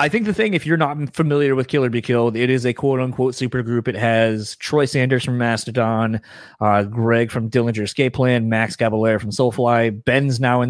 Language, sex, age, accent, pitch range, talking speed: English, male, 20-39, American, 115-145 Hz, 215 wpm